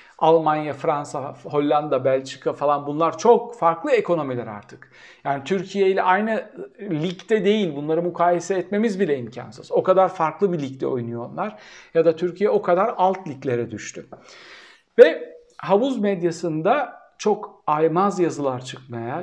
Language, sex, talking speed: Turkish, male, 130 wpm